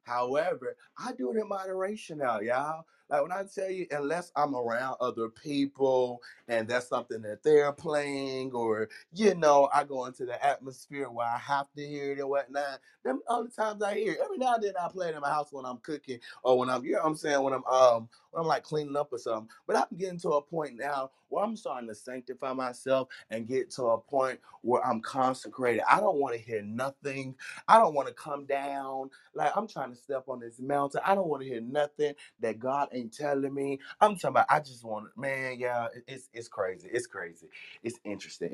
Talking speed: 225 wpm